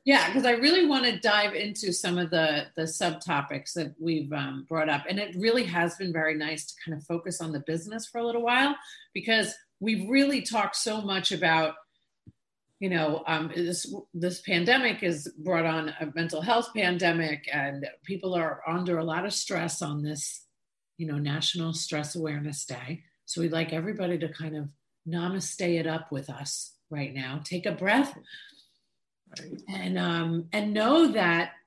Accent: American